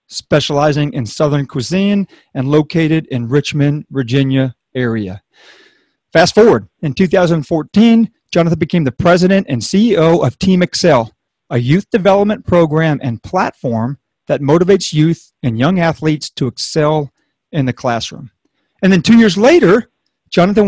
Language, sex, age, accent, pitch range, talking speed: English, male, 40-59, American, 140-190 Hz, 135 wpm